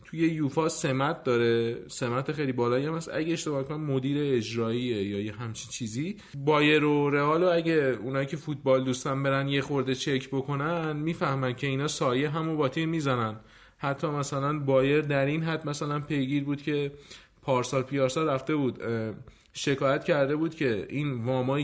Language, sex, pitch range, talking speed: Persian, male, 125-150 Hz, 160 wpm